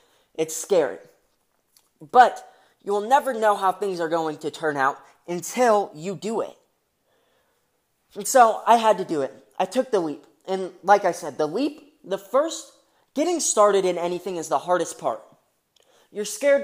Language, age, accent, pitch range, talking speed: English, 20-39, American, 175-225 Hz, 165 wpm